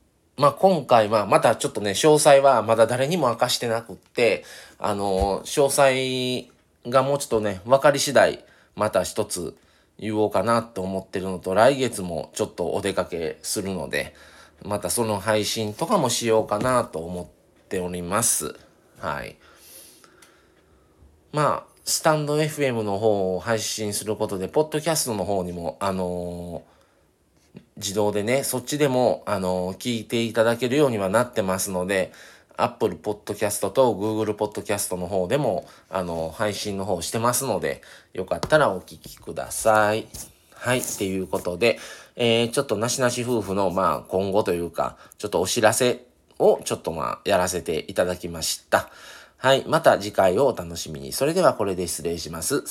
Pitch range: 90-120 Hz